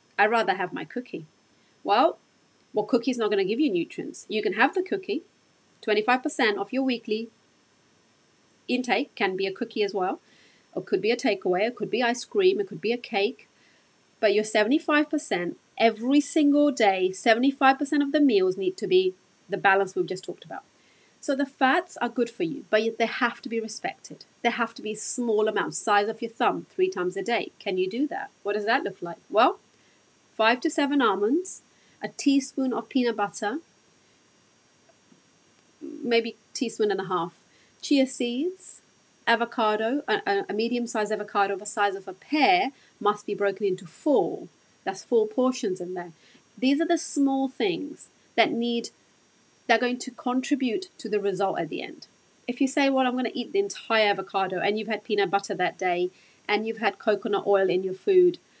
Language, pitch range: English, 205-290 Hz